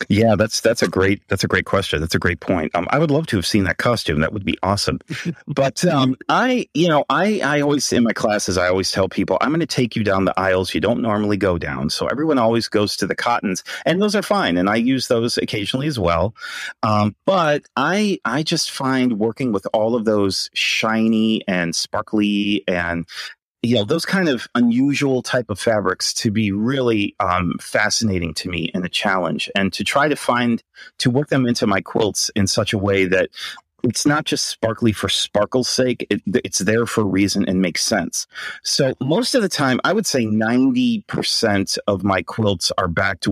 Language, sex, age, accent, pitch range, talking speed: English, male, 30-49, American, 100-130 Hz, 210 wpm